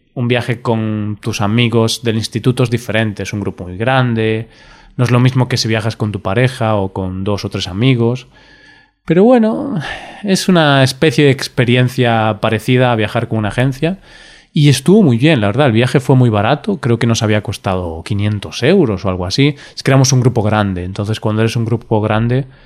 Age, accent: 20-39, Spanish